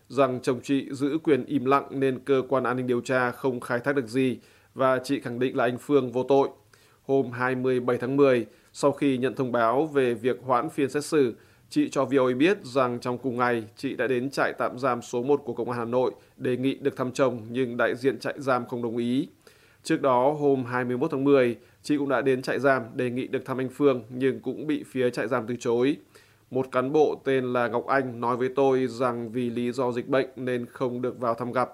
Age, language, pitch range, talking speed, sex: 20-39, Vietnamese, 120-135 Hz, 235 wpm, male